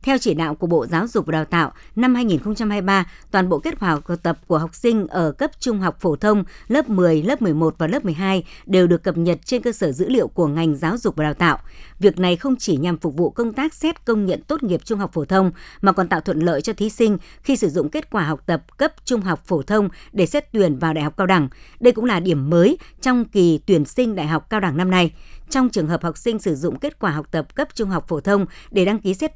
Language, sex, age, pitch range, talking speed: Vietnamese, male, 60-79, 160-220 Hz, 270 wpm